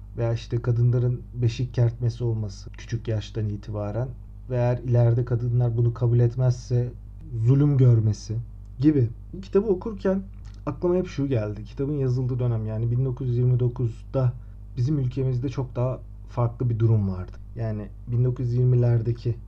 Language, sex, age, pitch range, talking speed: Turkish, male, 40-59, 110-130 Hz, 125 wpm